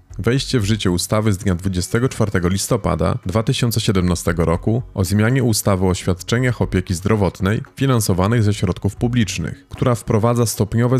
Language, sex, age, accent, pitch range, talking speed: Polish, male, 30-49, native, 90-115 Hz, 130 wpm